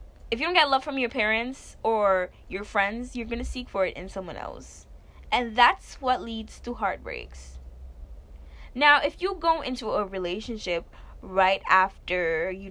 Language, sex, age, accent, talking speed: English, female, 10-29, American, 170 wpm